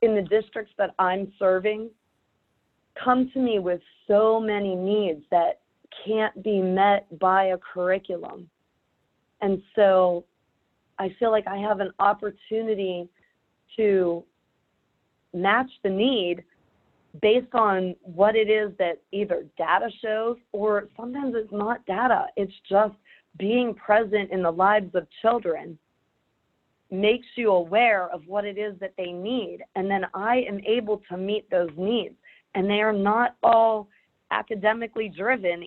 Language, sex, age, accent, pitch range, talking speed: English, female, 30-49, American, 185-220 Hz, 140 wpm